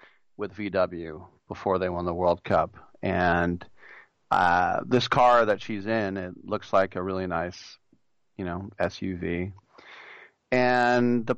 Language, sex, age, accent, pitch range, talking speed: English, male, 40-59, American, 95-135 Hz, 135 wpm